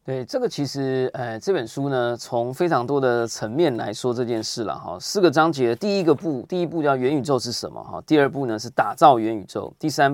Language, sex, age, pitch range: Chinese, male, 20-39, 110-150 Hz